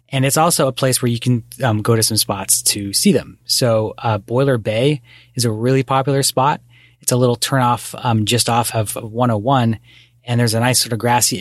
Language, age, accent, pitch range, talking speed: English, 30-49, American, 110-130 Hz, 220 wpm